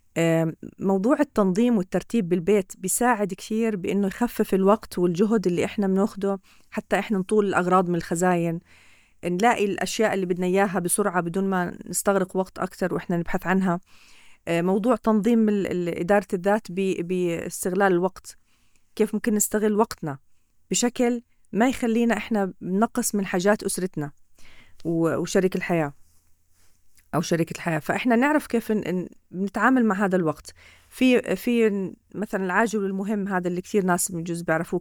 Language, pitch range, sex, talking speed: Arabic, 180-225 Hz, female, 130 wpm